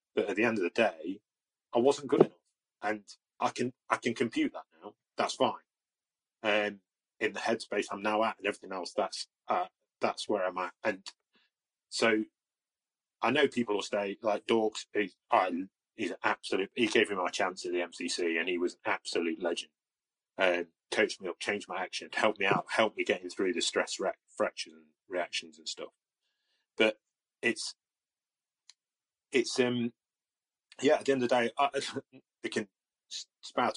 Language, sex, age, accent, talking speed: English, male, 30-49, British, 185 wpm